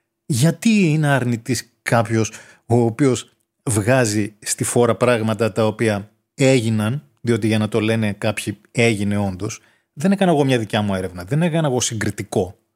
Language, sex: Greek, male